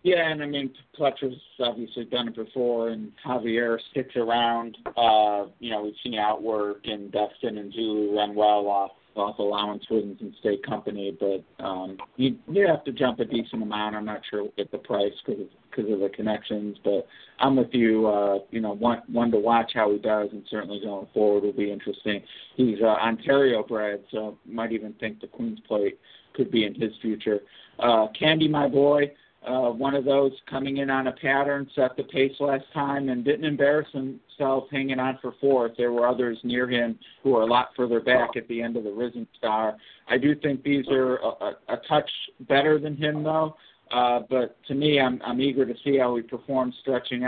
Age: 50-69